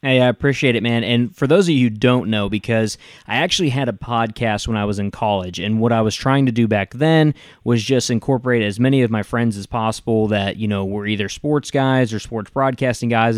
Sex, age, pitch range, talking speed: male, 20-39, 105-125 Hz, 240 wpm